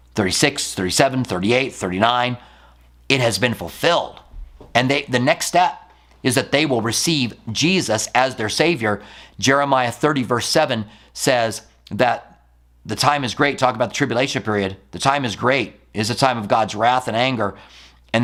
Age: 40-59